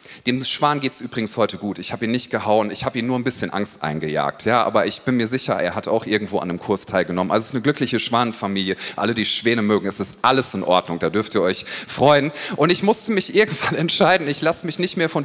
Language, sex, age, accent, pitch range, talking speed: German, male, 30-49, German, 130-185 Hz, 260 wpm